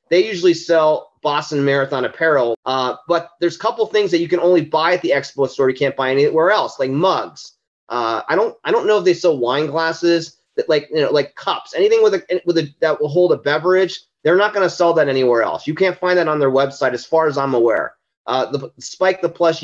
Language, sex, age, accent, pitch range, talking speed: English, male, 30-49, American, 145-190 Hz, 245 wpm